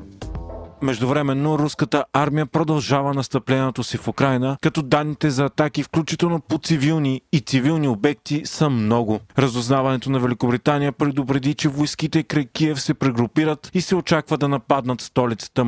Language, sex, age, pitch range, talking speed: Bulgarian, male, 30-49, 125-150 Hz, 140 wpm